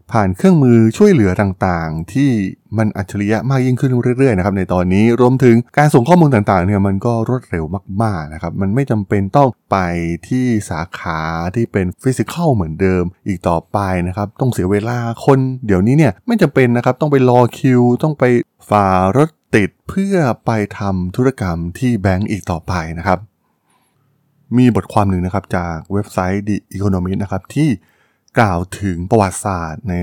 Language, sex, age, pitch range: Thai, male, 20-39, 90-125 Hz